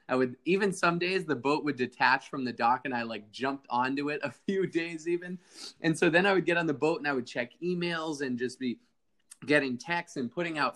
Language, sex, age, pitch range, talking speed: English, male, 20-39, 125-155 Hz, 245 wpm